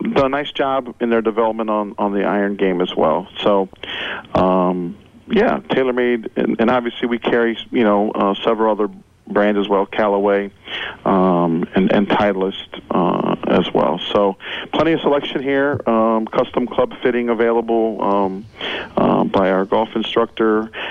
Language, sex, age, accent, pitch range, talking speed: English, male, 40-59, American, 95-115 Hz, 160 wpm